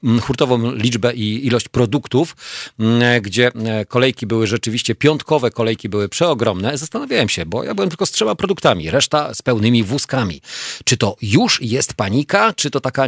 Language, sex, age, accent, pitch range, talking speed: Polish, male, 40-59, native, 100-135 Hz, 155 wpm